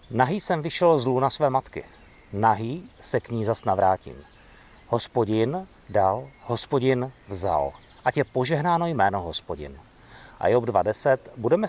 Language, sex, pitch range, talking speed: Czech, male, 105-140 Hz, 135 wpm